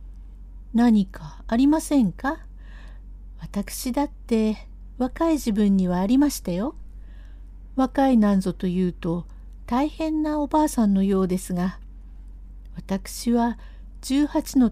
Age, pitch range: 60-79, 155-240 Hz